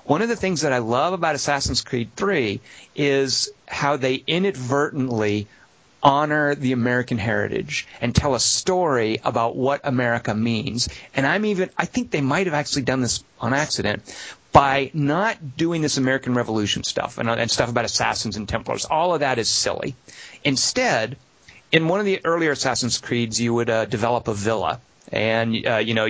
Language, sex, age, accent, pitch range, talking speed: English, male, 40-59, American, 115-145 Hz, 175 wpm